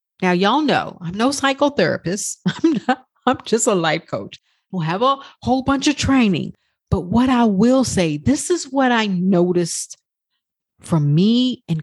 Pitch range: 170-245 Hz